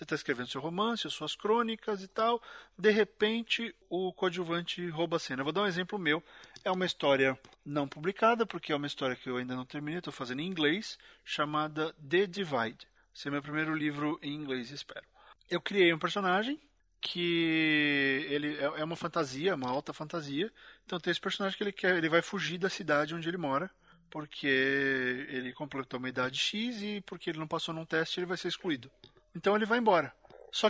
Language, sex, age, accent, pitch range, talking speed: Portuguese, male, 40-59, Brazilian, 150-200 Hz, 195 wpm